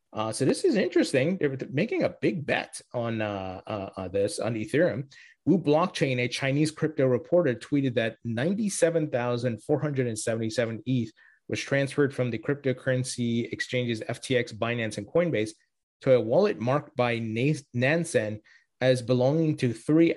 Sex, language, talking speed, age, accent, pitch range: male, English, 135 wpm, 30-49, American, 115-145 Hz